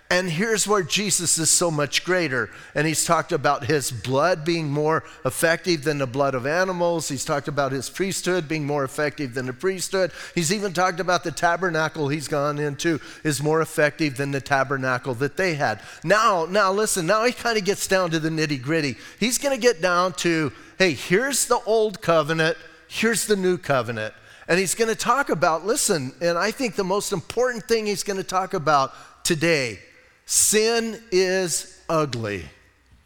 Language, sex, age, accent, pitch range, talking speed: English, male, 40-59, American, 150-200 Hz, 185 wpm